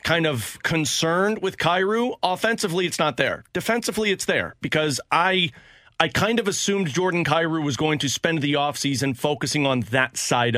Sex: male